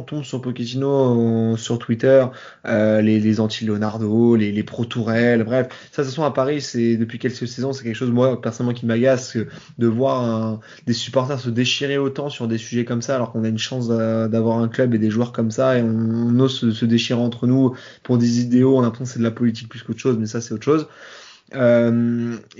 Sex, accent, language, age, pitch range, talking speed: male, French, French, 20-39, 115-135 Hz, 235 wpm